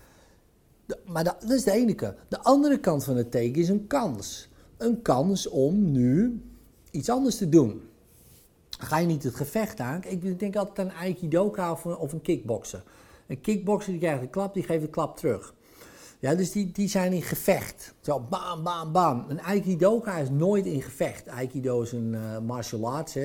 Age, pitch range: 50-69, 130-190 Hz